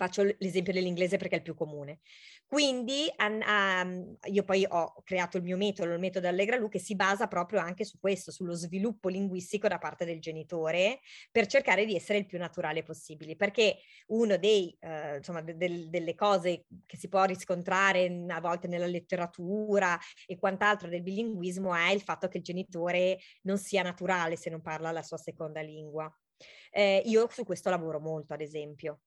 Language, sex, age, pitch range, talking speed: Italian, female, 20-39, 175-210 Hz, 170 wpm